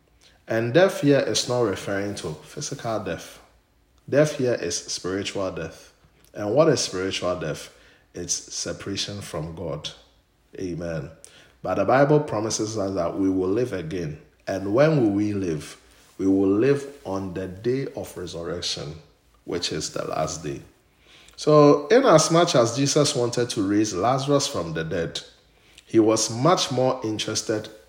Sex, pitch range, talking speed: male, 100-145 Hz, 145 wpm